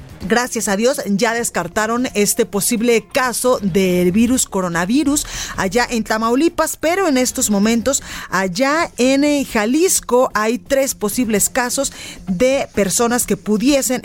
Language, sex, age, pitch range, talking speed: Spanish, female, 30-49, 190-255 Hz, 130 wpm